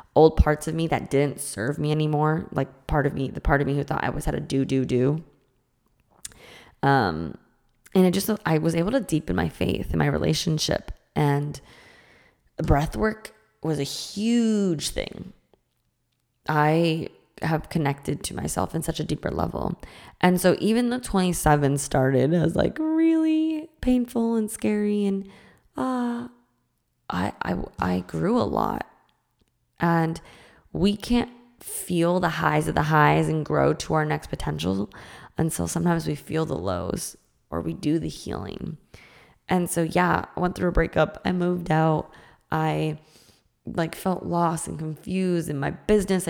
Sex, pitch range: female, 145-195 Hz